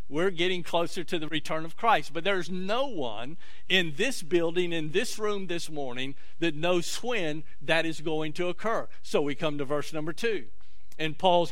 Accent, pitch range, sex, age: American, 150-205 Hz, male, 50-69